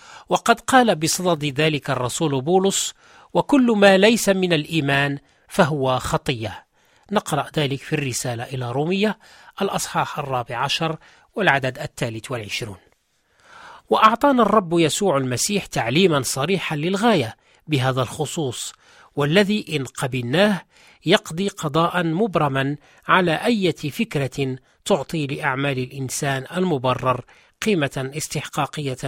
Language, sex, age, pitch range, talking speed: Arabic, male, 40-59, 140-200 Hz, 100 wpm